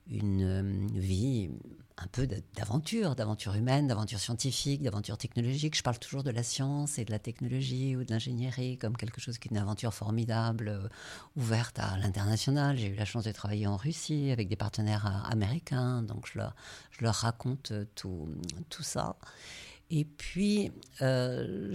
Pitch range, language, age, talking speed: 115-150 Hz, French, 50-69, 165 wpm